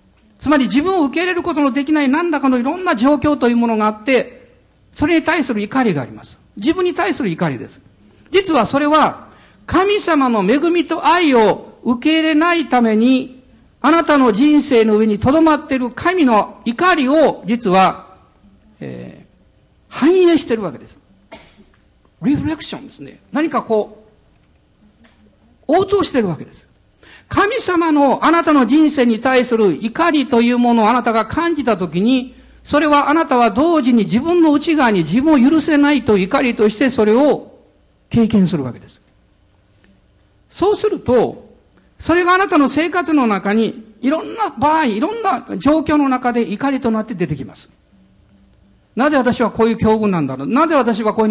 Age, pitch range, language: 50-69, 210-310 Hz, Japanese